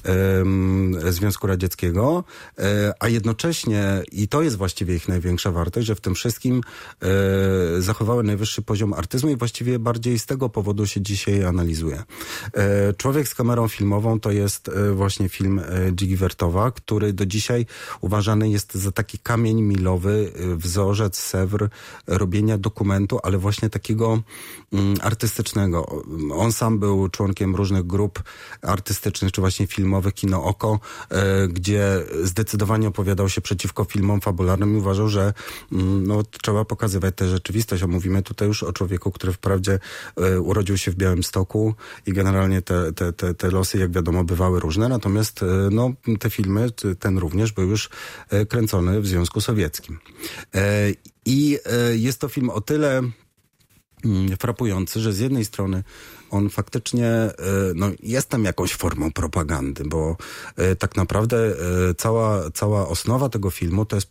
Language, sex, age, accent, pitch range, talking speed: Polish, male, 40-59, native, 95-110 Hz, 135 wpm